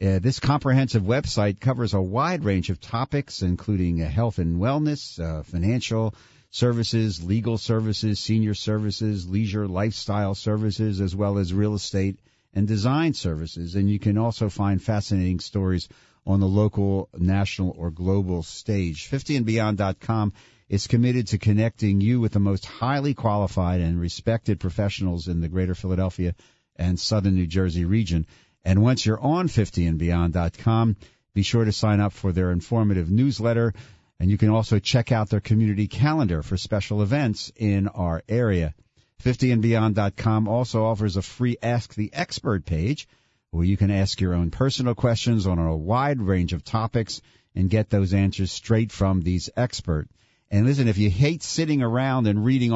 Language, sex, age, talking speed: English, male, 50-69, 160 wpm